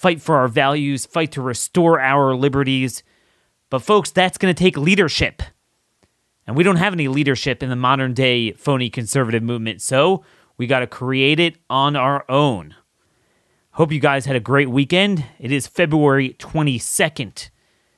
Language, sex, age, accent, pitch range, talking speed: English, male, 30-49, American, 125-160 Hz, 165 wpm